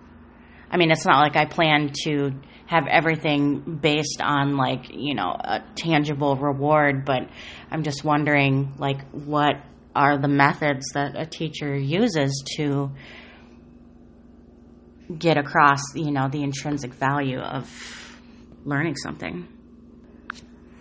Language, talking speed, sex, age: English, 120 wpm, female, 30-49